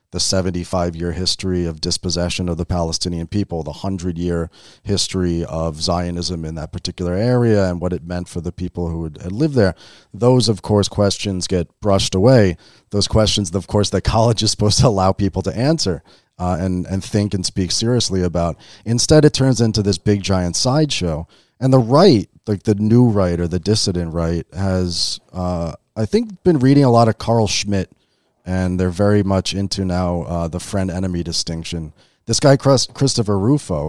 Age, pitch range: 30-49, 85-105 Hz